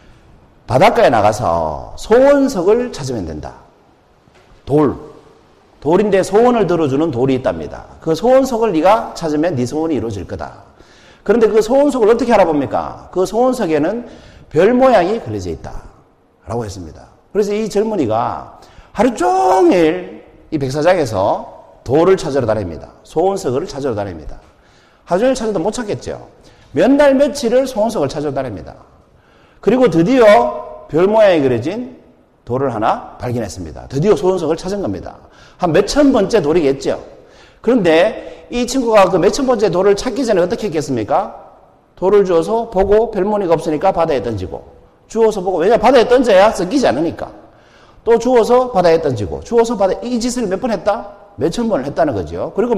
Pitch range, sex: 160-235 Hz, male